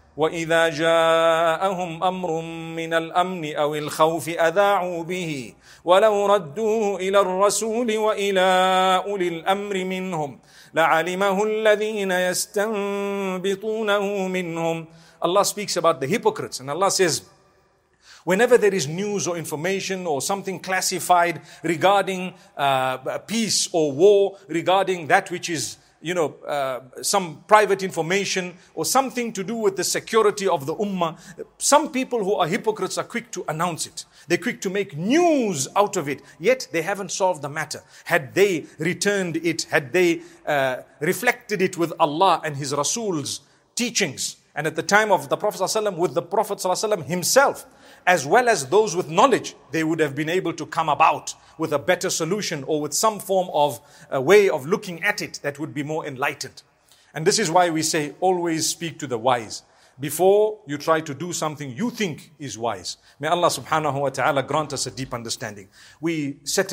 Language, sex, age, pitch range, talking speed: English, male, 50-69, 155-200 Hz, 145 wpm